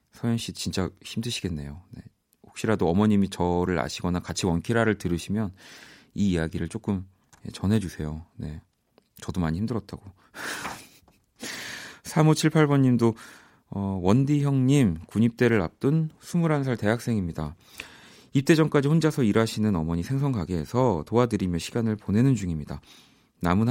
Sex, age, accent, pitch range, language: male, 40-59, native, 90-125 Hz, Korean